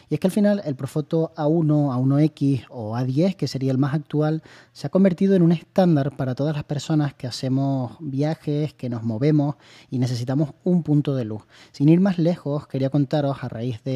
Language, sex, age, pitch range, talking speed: Spanish, male, 30-49, 130-155 Hz, 200 wpm